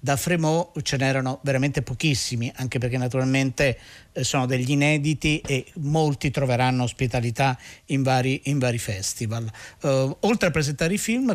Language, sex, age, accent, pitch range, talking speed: Italian, male, 50-69, native, 130-155 Hz, 130 wpm